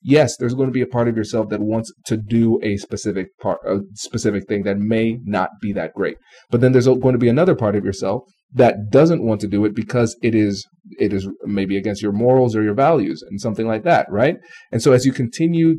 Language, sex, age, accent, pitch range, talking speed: English, male, 30-49, American, 105-135 Hz, 240 wpm